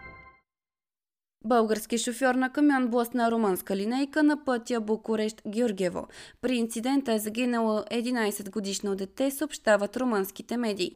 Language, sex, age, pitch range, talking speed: Bulgarian, female, 20-39, 200-250 Hz, 110 wpm